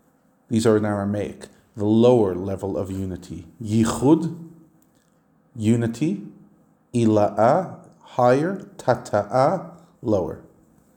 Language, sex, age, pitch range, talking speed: English, male, 40-59, 105-125 Hz, 80 wpm